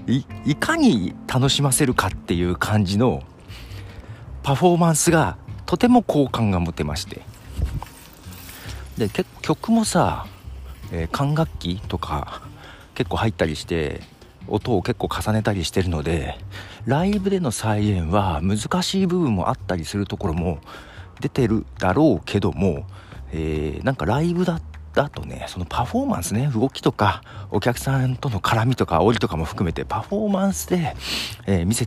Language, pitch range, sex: Japanese, 85-130 Hz, male